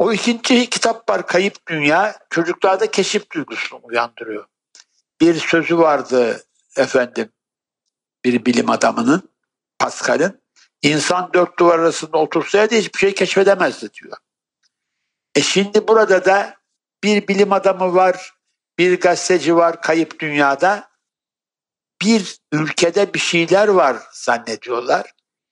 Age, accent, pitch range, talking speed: 60-79, native, 155-195 Hz, 115 wpm